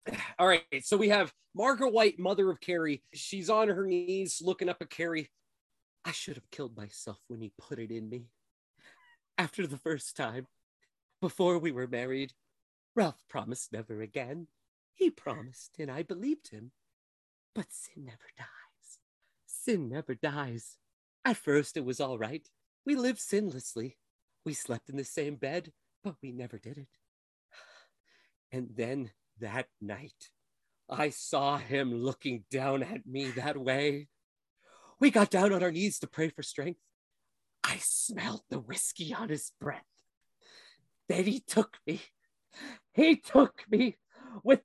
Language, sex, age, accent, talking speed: English, male, 30-49, American, 150 wpm